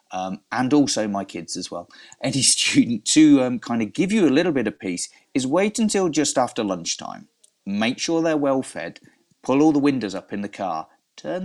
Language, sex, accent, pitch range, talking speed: English, male, British, 95-135 Hz, 210 wpm